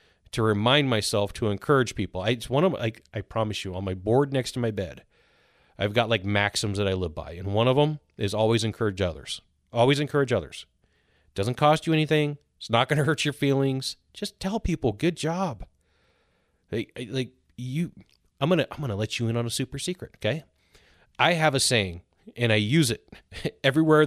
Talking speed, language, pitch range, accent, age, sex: 200 wpm, English, 105-145 Hz, American, 40-59, male